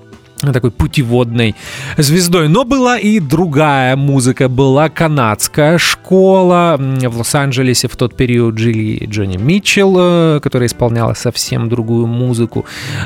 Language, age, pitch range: English, 30-49, 120-155 Hz